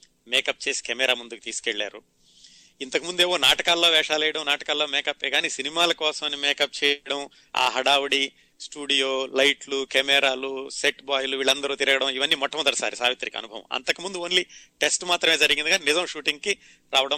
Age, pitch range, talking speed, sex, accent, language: 30-49, 120-155 Hz, 135 wpm, male, native, Telugu